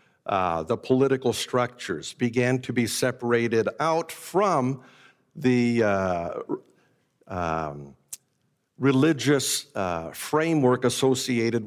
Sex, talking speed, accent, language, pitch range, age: male, 85 wpm, American, English, 110-135 Hz, 60-79